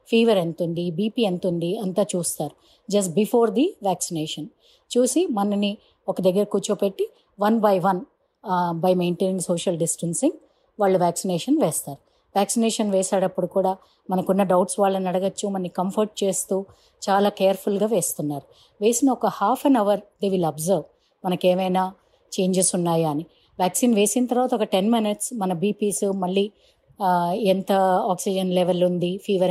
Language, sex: Telugu, female